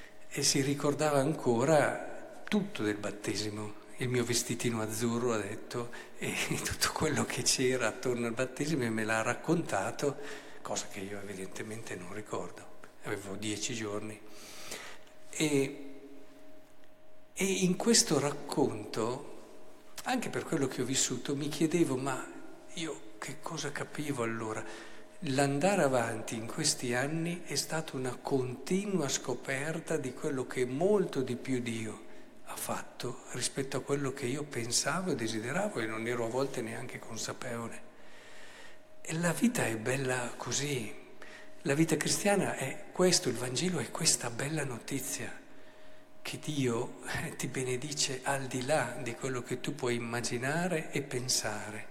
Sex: male